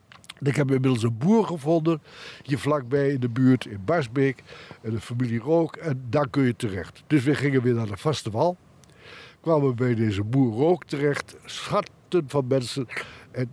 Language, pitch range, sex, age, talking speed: Dutch, 120-150 Hz, male, 60-79, 180 wpm